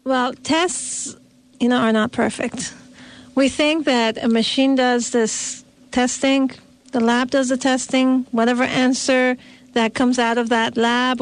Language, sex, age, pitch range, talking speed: English, female, 40-59, 225-260 Hz, 150 wpm